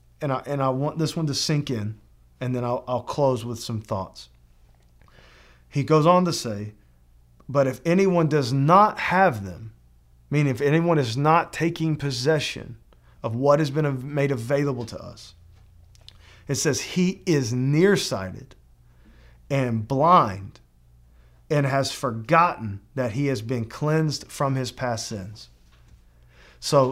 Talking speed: 145 wpm